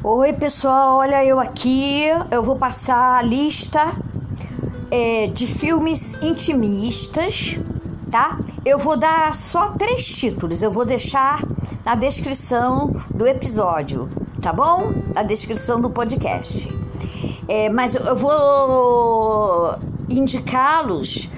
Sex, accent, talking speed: male, Brazilian, 110 wpm